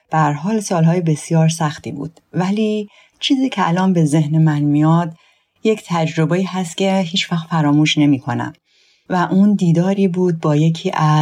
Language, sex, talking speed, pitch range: Persian, female, 145 wpm, 145-180 Hz